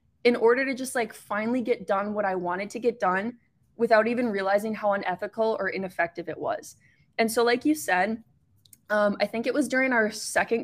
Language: English